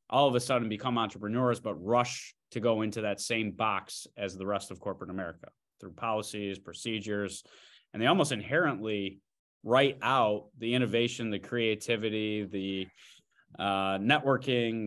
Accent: American